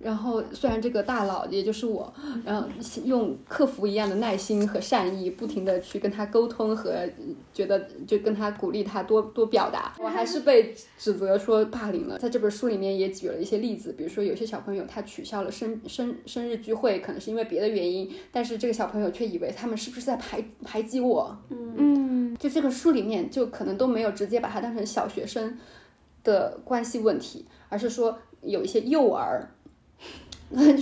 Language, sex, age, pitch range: Chinese, female, 20-39, 215-275 Hz